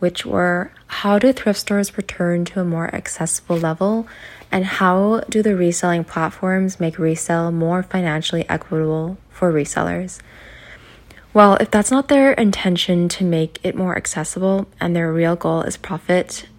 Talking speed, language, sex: 150 wpm, English, female